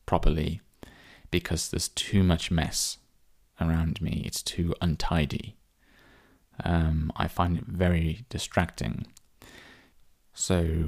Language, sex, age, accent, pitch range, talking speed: English, male, 20-39, British, 80-100 Hz, 100 wpm